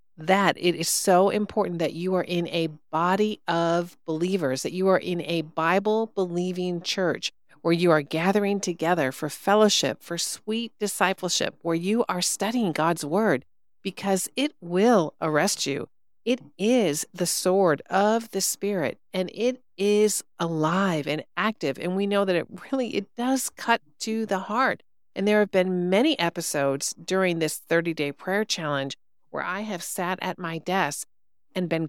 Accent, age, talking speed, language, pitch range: American, 50-69, 160 wpm, English, 155-200 Hz